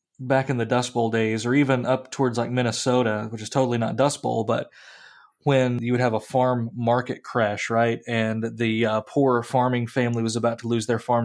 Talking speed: 215 wpm